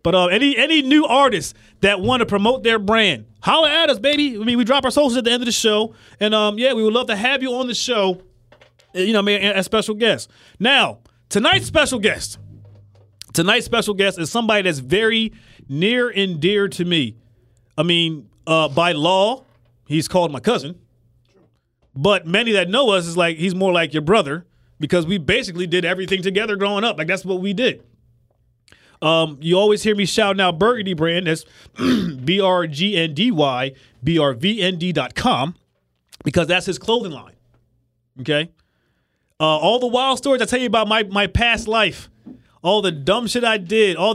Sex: male